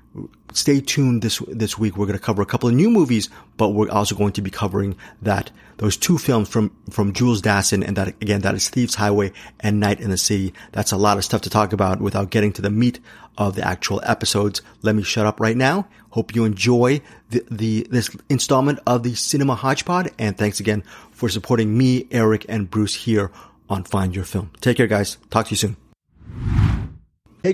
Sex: male